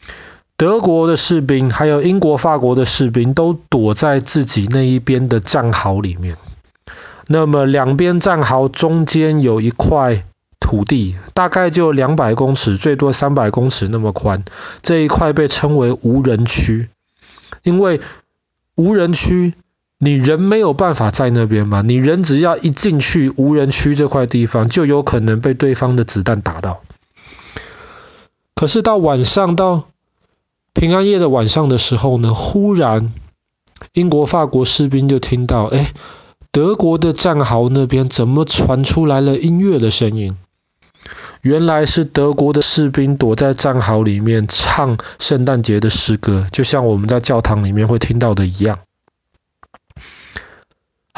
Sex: male